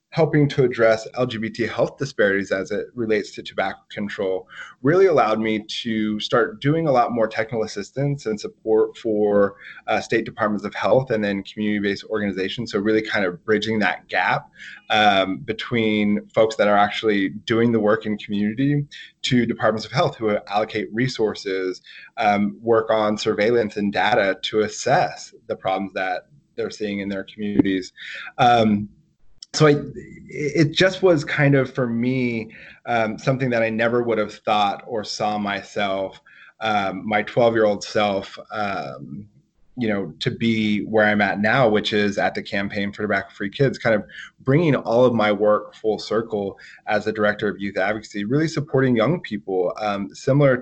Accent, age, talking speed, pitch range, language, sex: American, 20-39, 160 wpm, 105-120 Hz, English, male